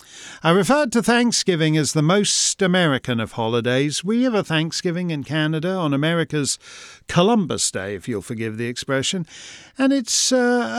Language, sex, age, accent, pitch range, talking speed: English, male, 50-69, British, 125-190 Hz, 155 wpm